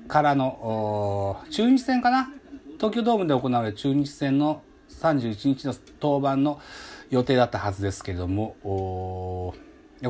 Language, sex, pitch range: Japanese, male, 105-175 Hz